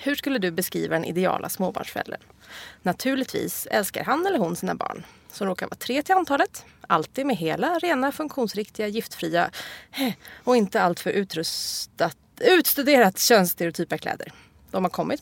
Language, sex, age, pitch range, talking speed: English, female, 30-49, 180-265 Hz, 145 wpm